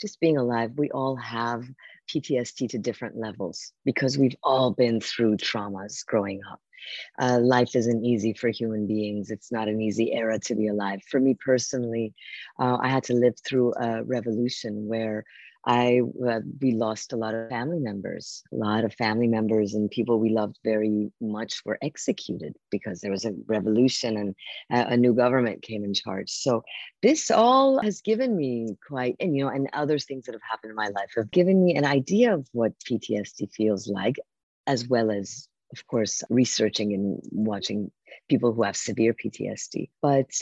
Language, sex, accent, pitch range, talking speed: English, female, American, 110-130 Hz, 185 wpm